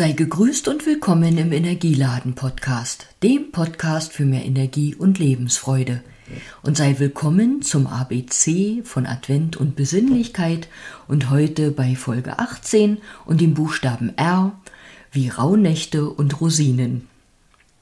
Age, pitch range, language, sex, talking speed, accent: 50-69, 130-180 Hz, German, female, 120 wpm, German